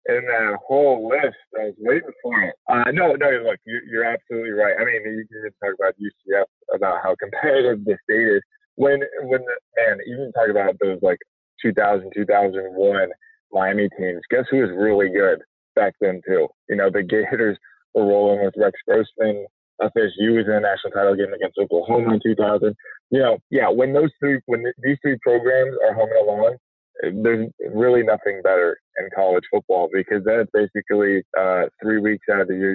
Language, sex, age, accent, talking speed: English, male, 20-39, American, 190 wpm